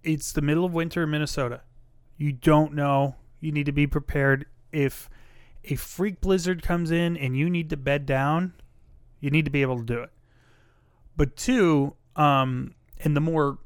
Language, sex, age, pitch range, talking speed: English, male, 30-49, 130-155 Hz, 180 wpm